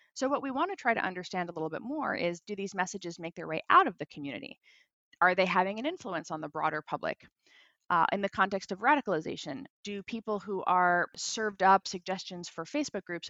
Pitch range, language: 170-220 Hz, English